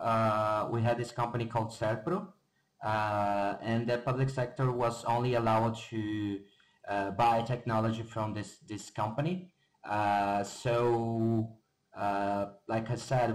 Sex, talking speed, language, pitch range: male, 130 wpm, English, 105-125 Hz